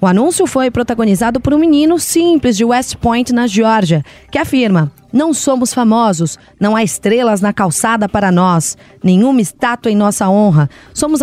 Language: Portuguese